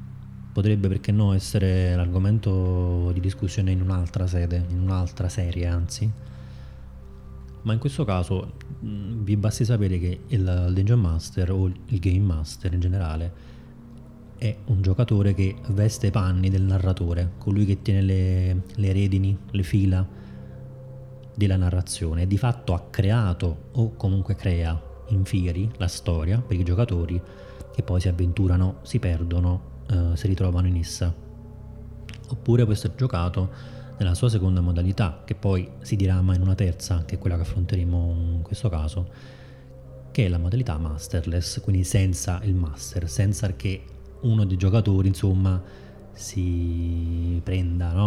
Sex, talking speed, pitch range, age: male, 145 wpm, 90-105 Hz, 20-39